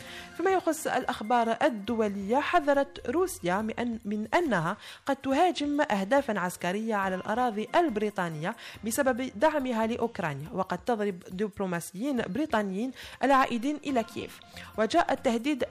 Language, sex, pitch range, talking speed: French, female, 190-265 Hz, 105 wpm